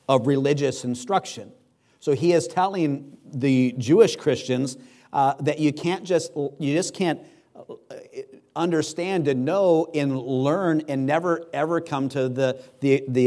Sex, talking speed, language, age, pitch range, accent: male, 140 wpm, English, 50-69, 130-155 Hz, American